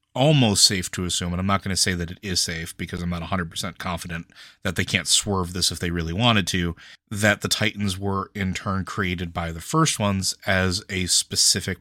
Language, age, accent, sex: English, 30-49, American, male